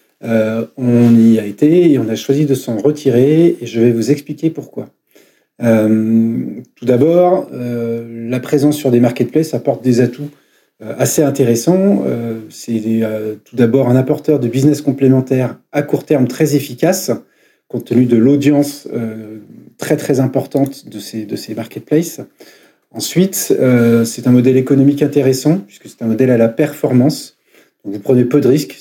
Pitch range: 120-145 Hz